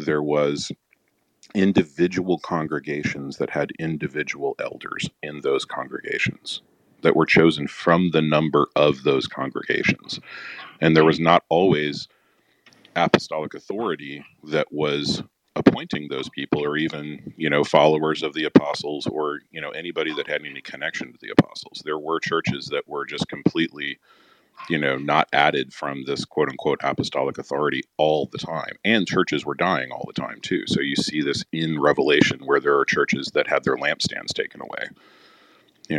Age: 40-59